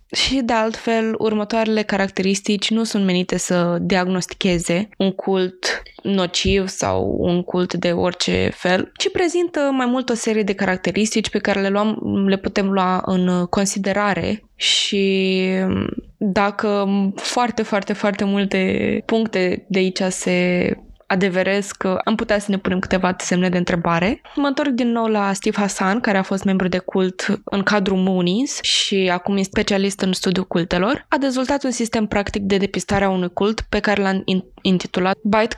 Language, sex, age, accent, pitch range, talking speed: Romanian, female, 20-39, native, 185-220 Hz, 160 wpm